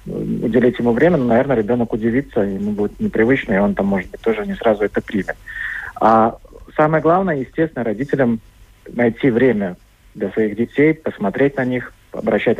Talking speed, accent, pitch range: 160 wpm, native, 115-140 Hz